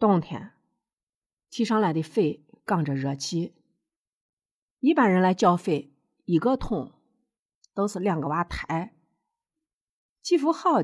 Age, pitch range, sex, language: 50-69, 160-270 Hz, female, Chinese